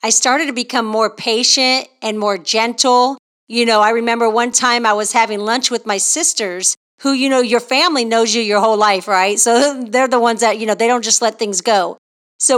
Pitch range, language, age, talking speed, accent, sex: 215-255 Hz, English, 40-59, 225 wpm, American, female